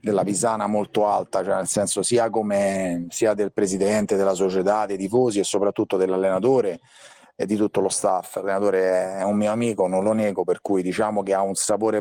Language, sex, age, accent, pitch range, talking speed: Italian, male, 40-59, native, 100-115 Hz, 195 wpm